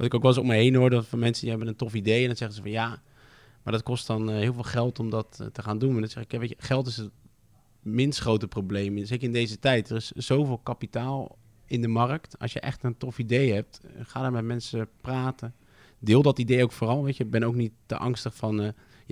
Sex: male